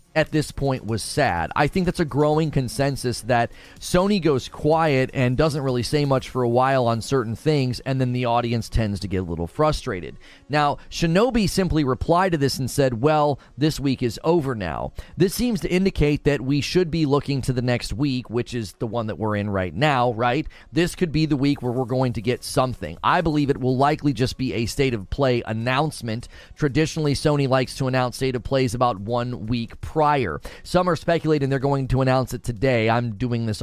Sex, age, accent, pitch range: male, 30-49, American, 120-150 Hz